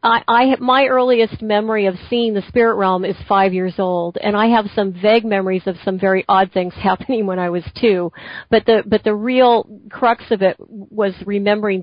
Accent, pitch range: American, 195-235 Hz